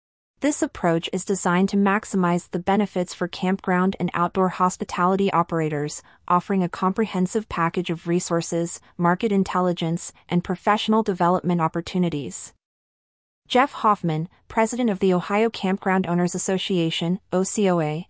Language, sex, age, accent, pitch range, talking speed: English, female, 30-49, American, 170-205 Hz, 120 wpm